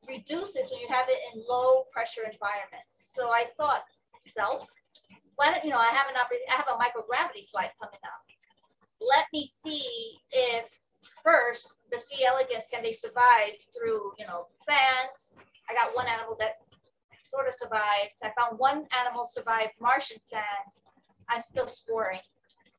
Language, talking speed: English, 160 wpm